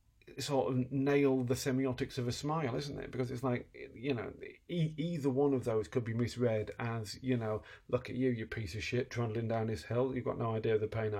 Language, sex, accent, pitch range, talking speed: English, male, British, 110-135 Hz, 235 wpm